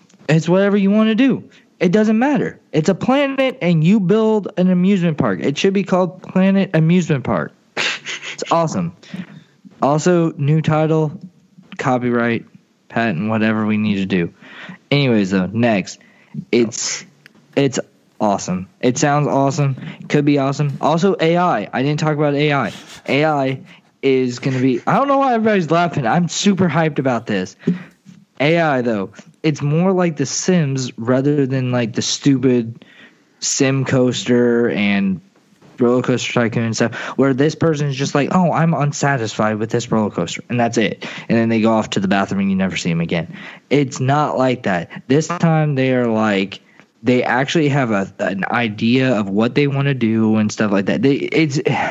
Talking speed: 175 wpm